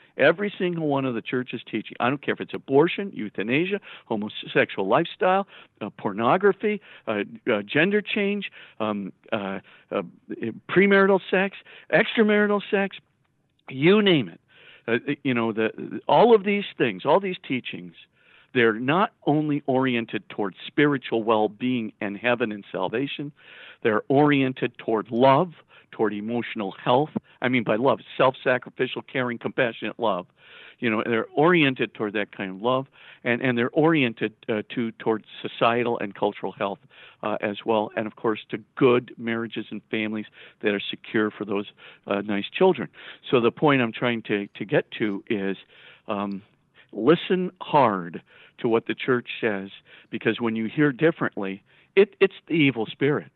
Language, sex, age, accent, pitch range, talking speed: English, male, 50-69, American, 110-170 Hz, 155 wpm